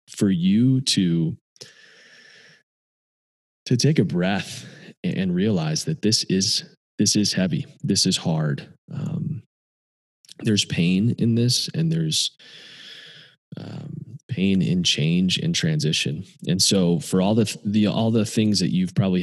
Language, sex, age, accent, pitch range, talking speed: English, male, 20-39, American, 105-170 Hz, 135 wpm